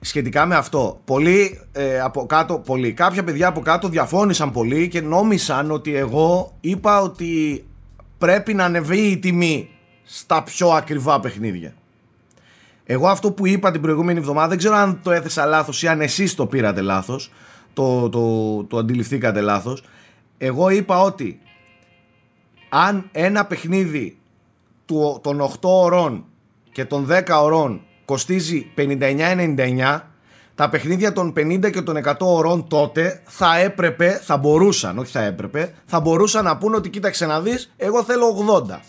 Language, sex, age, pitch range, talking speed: Greek, male, 30-49, 145-195 Hz, 150 wpm